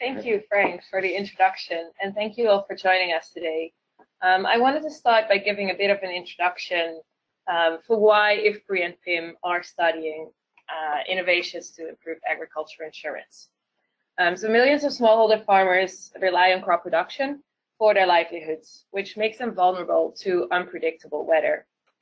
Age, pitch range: 20-39, 175-230 Hz